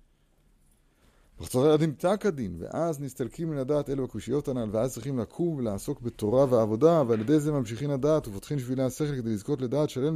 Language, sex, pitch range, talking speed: Hebrew, male, 110-145 Hz, 165 wpm